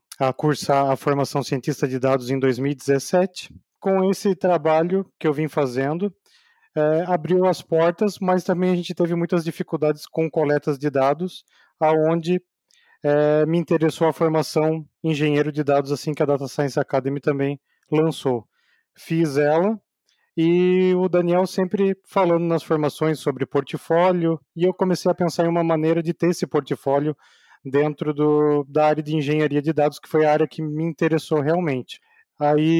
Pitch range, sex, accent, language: 150-175 Hz, male, Brazilian, Portuguese